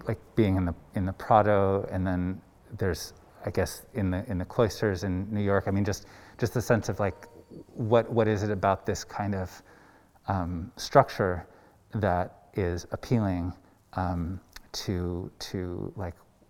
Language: English